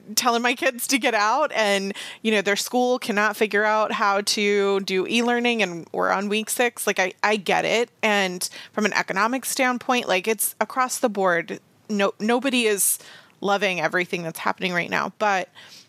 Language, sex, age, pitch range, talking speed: English, female, 20-39, 185-220 Hz, 180 wpm